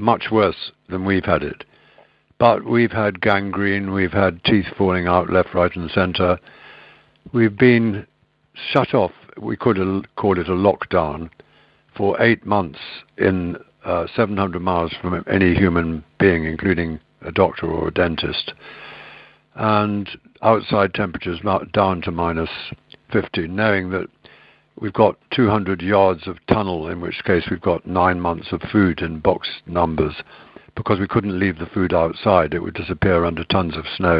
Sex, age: male, 60-79